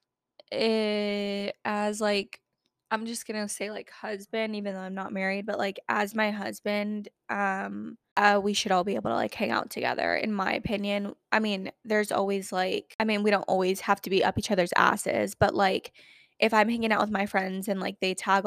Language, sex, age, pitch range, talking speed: English, female, 10-29, 195-240 Hz, 205 wpm